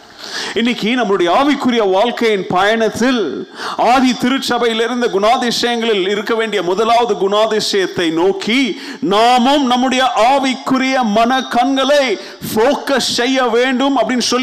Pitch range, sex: 225-275 Hz, male